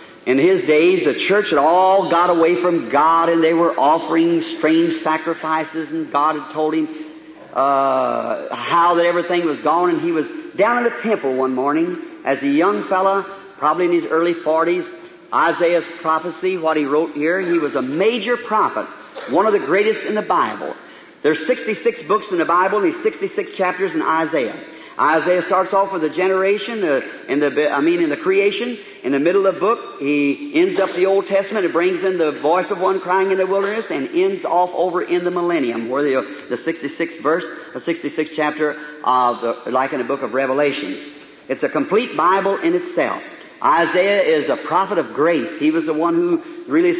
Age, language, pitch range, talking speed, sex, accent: 50-69, English, 160-235 Hz, 195 wpm, male, American